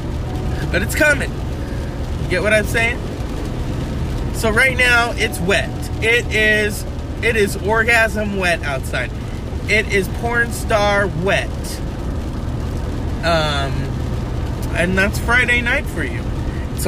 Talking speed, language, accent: 115 wpm, English, American